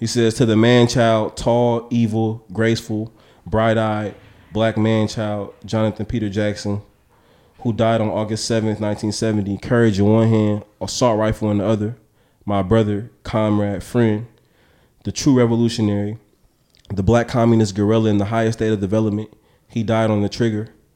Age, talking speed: 20-39, 145 wpm